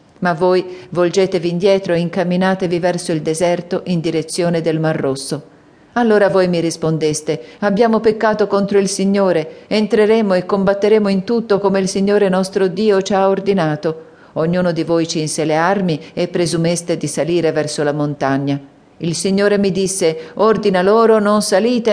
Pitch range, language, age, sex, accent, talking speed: 160-195 Hz, Italian, 40-59, female, native, 155 wpm